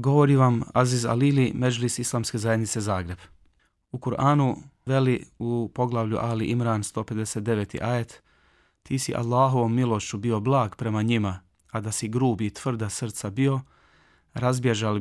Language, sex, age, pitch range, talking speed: Croatian, male, 30-49, 105-125 Hz, 135 wpm